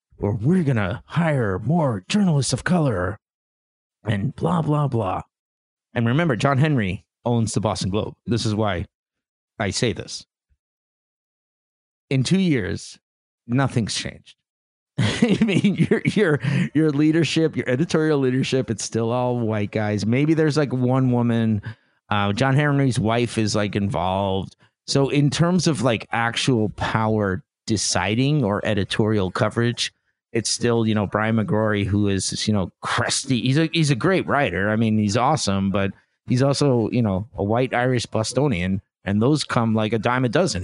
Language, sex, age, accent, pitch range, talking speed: English, male, 30-49, American, 105-155 Hz, 155 wpm